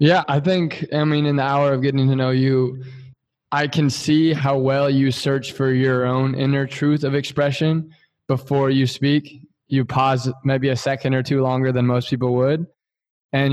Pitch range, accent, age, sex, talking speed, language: 125-140 Hz, American, 20-39, male, 190 wpm, English